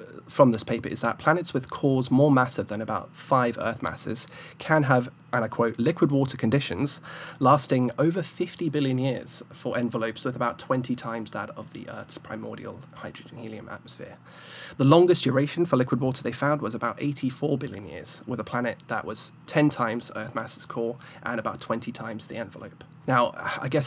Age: 30-49